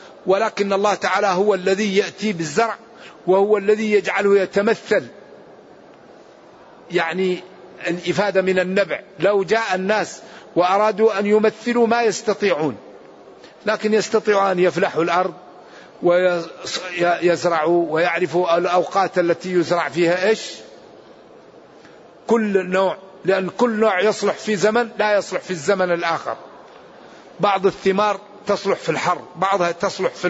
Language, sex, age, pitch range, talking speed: Arabic, male, 50-69, 180-215 Hz, 110 wpm